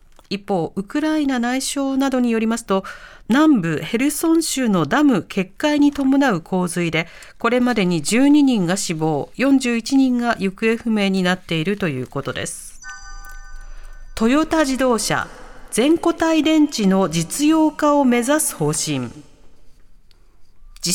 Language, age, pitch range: Japanese, 40-59, 185-285 Hz